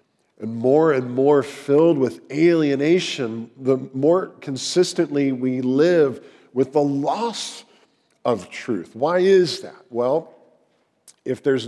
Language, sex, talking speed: English, male, 120 wpm